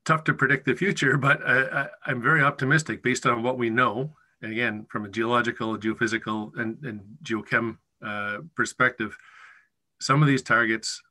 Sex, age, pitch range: male, 40-59, 110-130 Hz